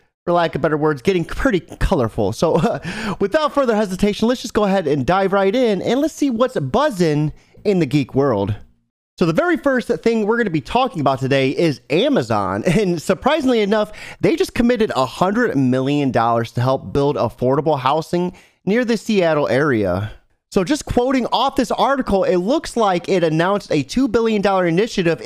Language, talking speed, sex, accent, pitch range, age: English, 180 wpm, male, American, 140-210 Hz, 30-49